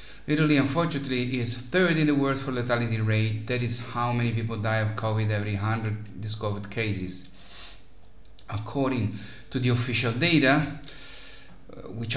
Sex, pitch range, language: male, 105-125 Hz, English